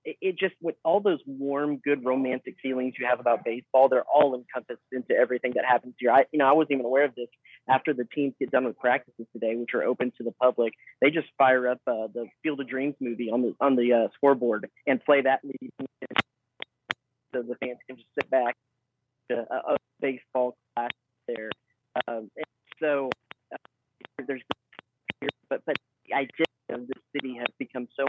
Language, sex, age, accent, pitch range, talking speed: English, male, 30-49, American, 120-135 Hz, 195 wpm